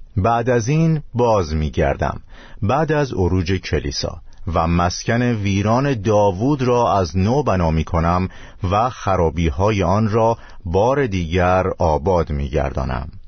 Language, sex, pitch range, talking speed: Persian, male, 85-115 Hz, 130 wpm